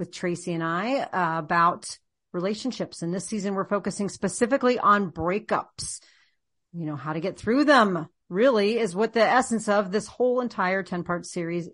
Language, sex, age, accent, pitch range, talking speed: English, female, 40-59, American, 175-220 Hz, 170 wpm